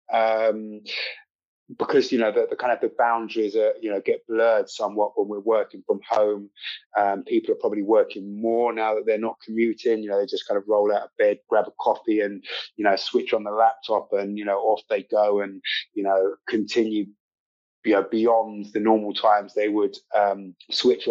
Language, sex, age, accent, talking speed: English, male, 20-39, British, 190 wpm